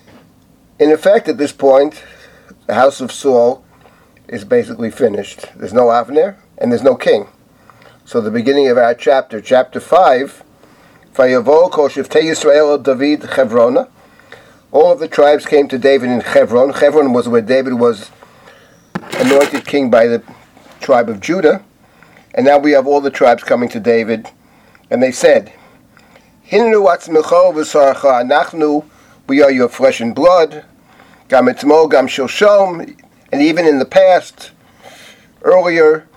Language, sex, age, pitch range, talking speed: English, male, 50-69, 135-170 Hz, 125 wpm